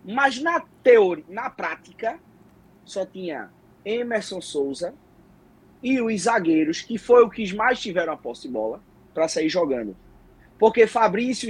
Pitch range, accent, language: 160-220 Hz, Brazilian, Portuguese